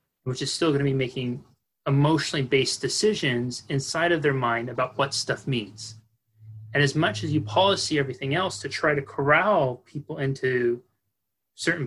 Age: 30-49